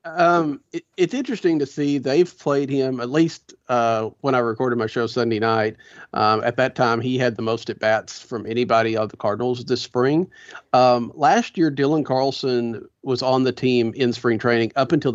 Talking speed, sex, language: 195 wpm, male, English